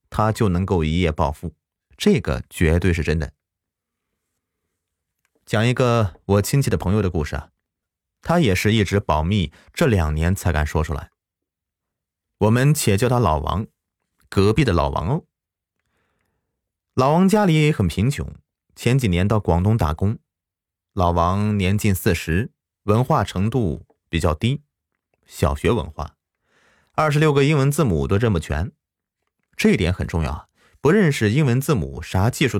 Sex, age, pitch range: male, 30-49, 85-120 Hz